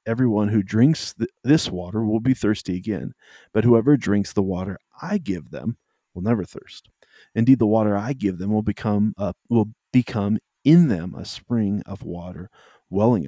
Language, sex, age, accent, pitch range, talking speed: English, male, 40-59, American, 95-120 Hz, 170 wpm